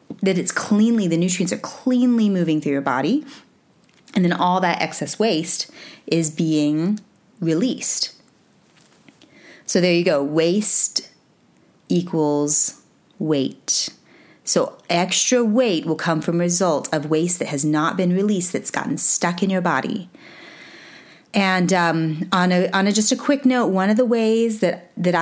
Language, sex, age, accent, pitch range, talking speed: English, female, 30-49, American, 165-215 Hz, 150 wpm